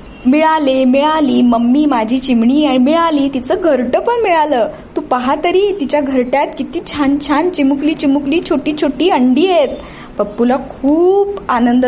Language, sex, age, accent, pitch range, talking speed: Marathi, female, 20-39, native, 215-290 Hz, 135 wpm